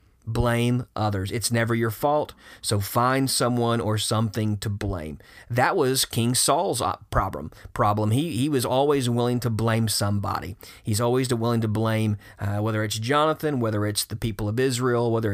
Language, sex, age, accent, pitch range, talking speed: English, male, 30-49, American, 105-125 Hz, 170 wpm